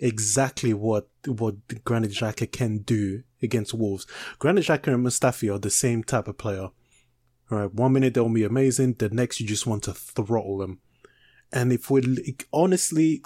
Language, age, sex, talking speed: English, 20-39, male, 170 wpm